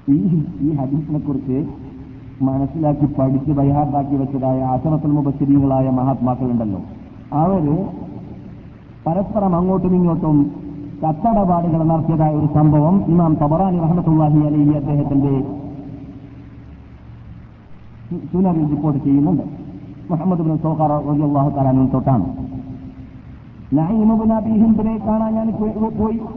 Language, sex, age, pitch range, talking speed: Malayalam, male, 50-69, 150-220 Hz, 75 wpm